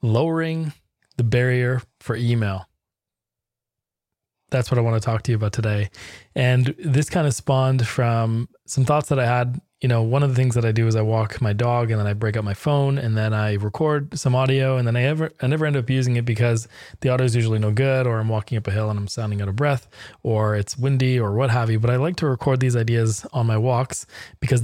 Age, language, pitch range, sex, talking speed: 20-39, English, 110-130 Hz, male, 245 wpm